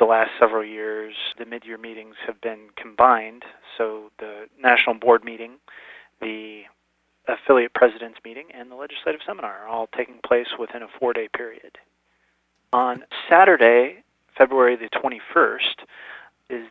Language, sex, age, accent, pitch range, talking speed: English, male, 30-49, American, 110-125 Hz, 135 wpm